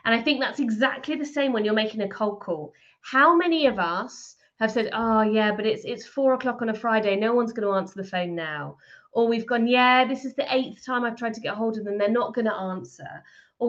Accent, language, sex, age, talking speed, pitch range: British, English, female, 30-49, 260 wpm, 200-250 Hz